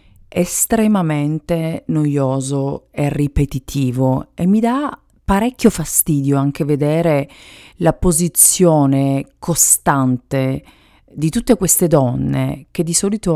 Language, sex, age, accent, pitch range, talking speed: Italian, female, 40-59, native, 135-180 Hz, 95 wpm